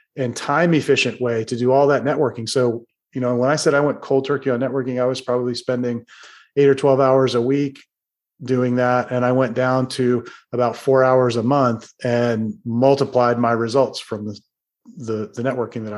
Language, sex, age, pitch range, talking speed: English, male, 30-49, 125-140 Hz, 195 wpm